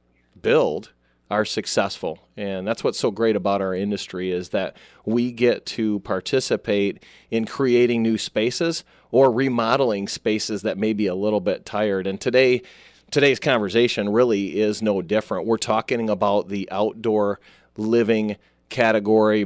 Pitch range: 100-115 Hz